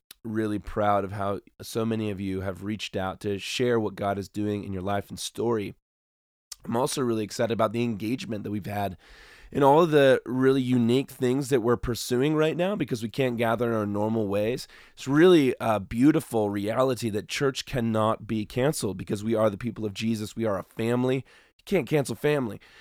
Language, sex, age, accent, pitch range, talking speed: English, male, 20-39, American, 110-130 Hz, 205 wpm